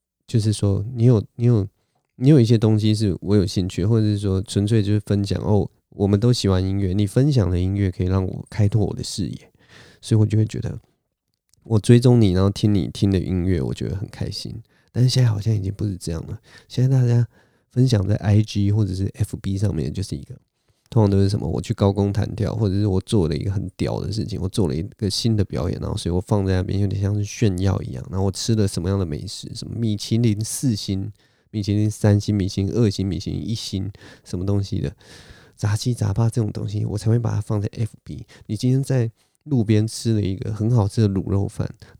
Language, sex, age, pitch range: Chinese, male, 20-39, 100-120 Hz